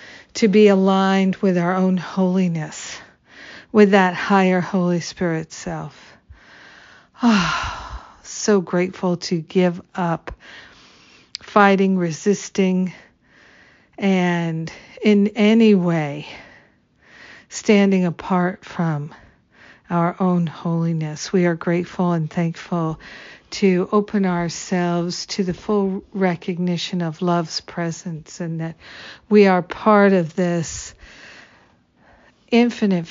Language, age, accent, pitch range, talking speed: English, 50-69, American, 170-195 Hz, 100 wpm